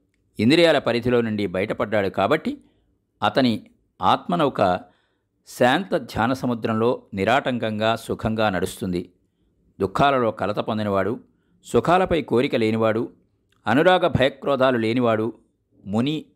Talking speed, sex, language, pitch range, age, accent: 80 wpm, male, Telugu, 95-130 Hz, 50-69, native